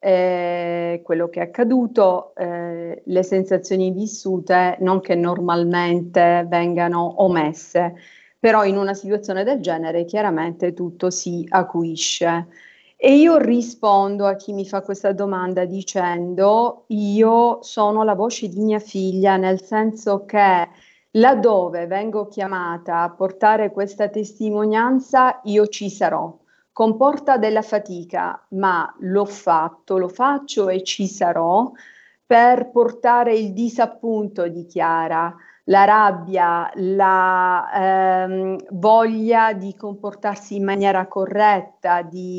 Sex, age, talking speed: female, 40-59, 115 wpm